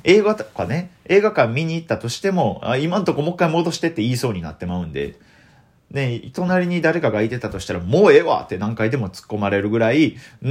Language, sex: Japanese, male